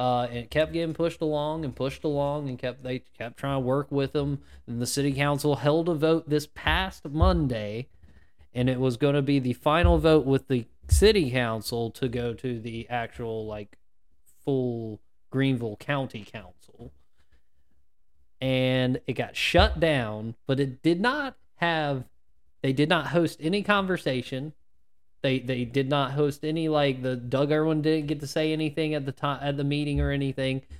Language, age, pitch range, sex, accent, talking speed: English, 20-39, 115-155 Hz, male, American, 175 wpm